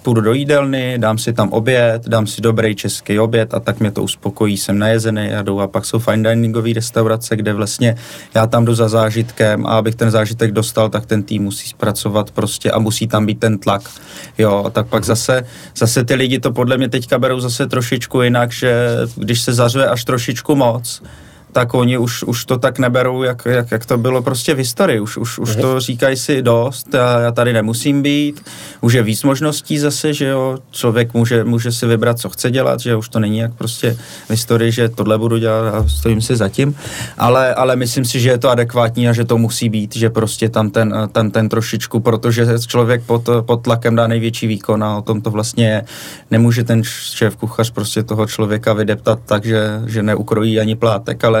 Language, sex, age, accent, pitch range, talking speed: Czech, male, 20-39, native, 110-125 Hz, 210 wpm